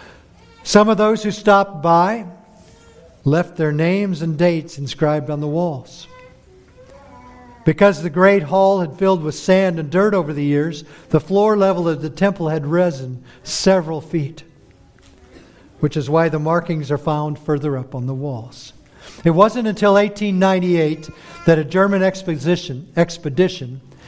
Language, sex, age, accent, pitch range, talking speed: English, male, 50-69, American, 135-170 Hz, 145 wpm